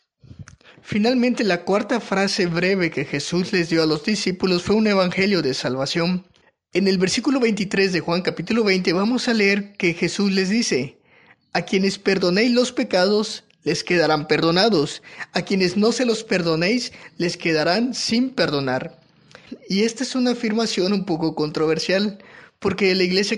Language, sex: Spanish, male